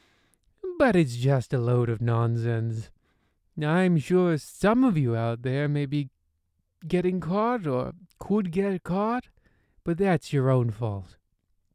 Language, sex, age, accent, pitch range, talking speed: English, male, 20-39, American, 115-175 Hz, 140 wpm